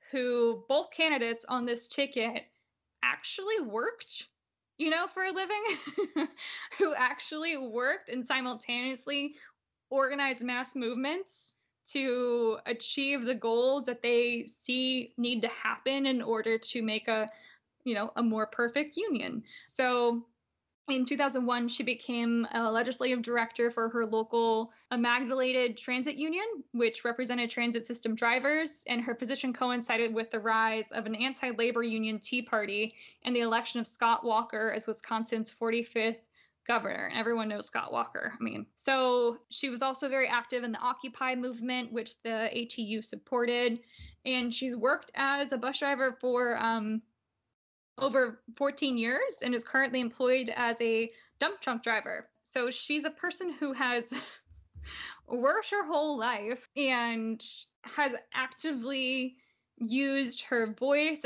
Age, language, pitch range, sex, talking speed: 10-29, English, 230-265 Hz, female, 140 wpm